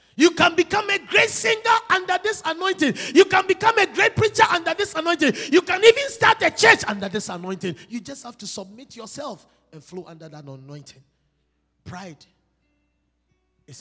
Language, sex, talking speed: English, male, 175 wpm